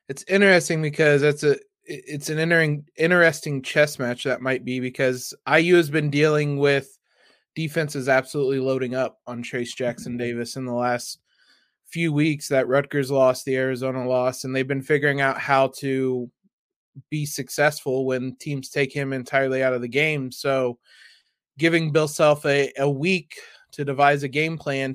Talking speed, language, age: 165 wpm, English, 20-39